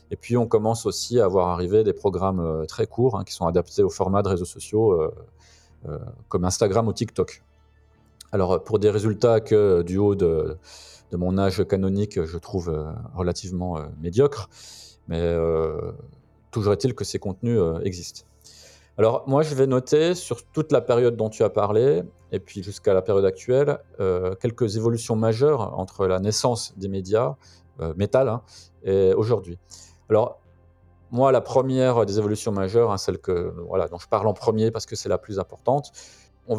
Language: French